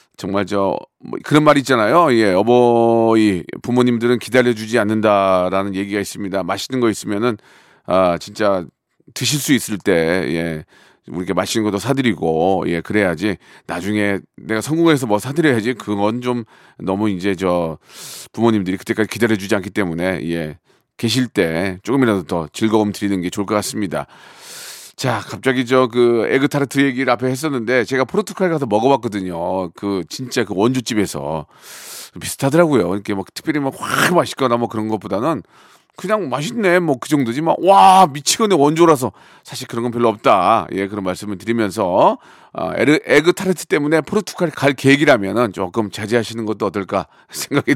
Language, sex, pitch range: Korean, male, 100-140 Hz